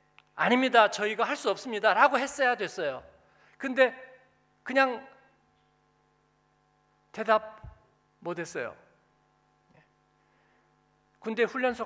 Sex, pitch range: male, 185-260 Hz